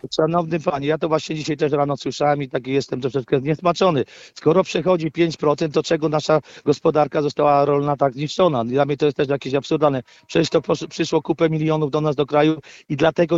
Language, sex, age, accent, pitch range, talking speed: Polish, male, 40-59, native, 155-175 Hz, 195 wpm